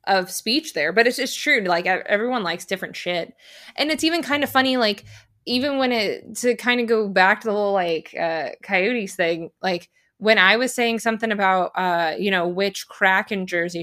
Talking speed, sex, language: 210 wpm, female, English